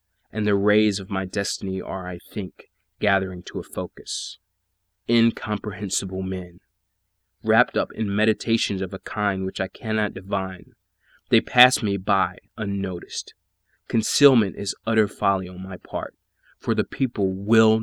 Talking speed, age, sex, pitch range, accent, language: 140 wpm, 20-39, male, 95-105 Hz, American, English